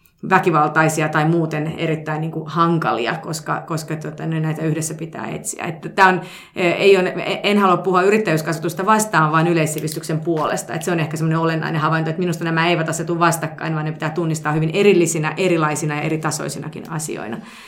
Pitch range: 160-185 Hz